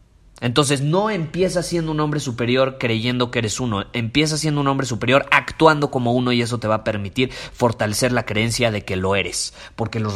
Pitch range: 110-145 Hz